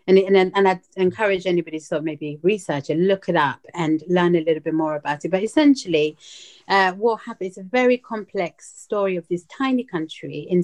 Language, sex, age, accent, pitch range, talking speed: English, female, 30-49, British, 160-195 Hz, 215 wpm